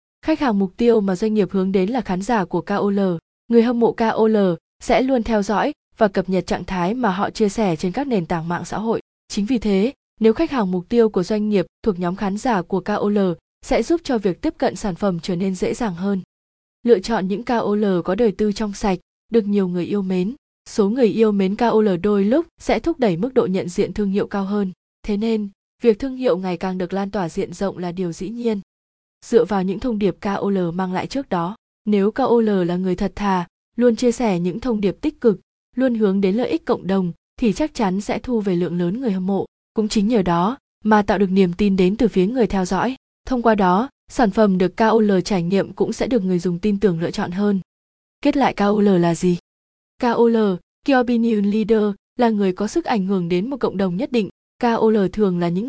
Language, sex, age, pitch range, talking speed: Vietnamese, female, 20-39, 190-230 Hz, 235 wpm